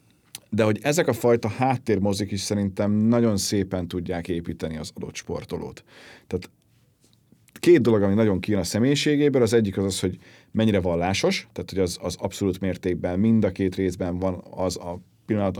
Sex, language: male, Hungarian